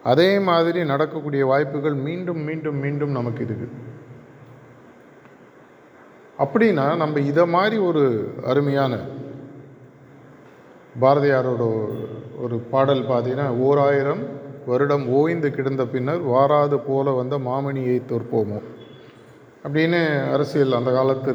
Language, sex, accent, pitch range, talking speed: Tamil, male, native, 125-150 Hz, 95 wpm